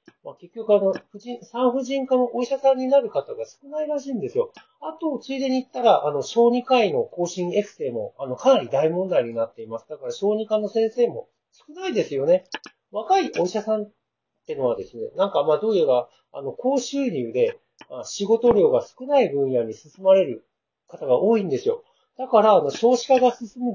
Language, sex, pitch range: Japanese, male, 195-285 Hz